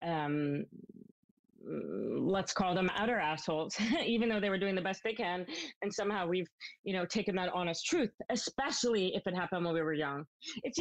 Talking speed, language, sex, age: 185 wpm, English, female, 30-49